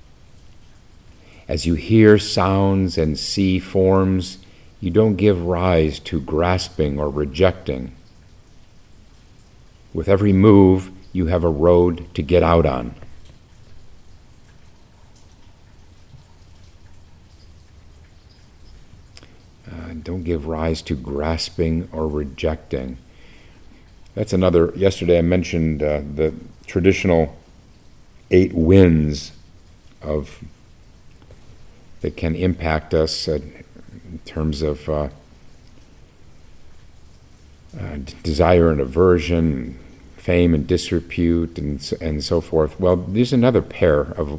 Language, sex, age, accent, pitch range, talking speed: English, male, 50-69, American, 75-90 Hz, 95 wpm